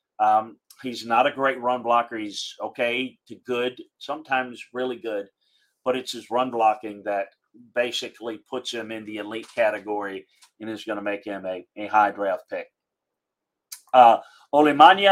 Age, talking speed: 40-59, 160 wpm